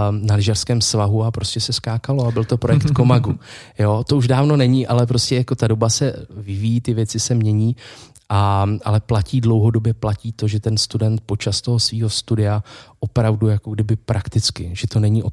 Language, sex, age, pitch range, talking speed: Czech, male, 20-39, 105-115 Hz, 180 wpm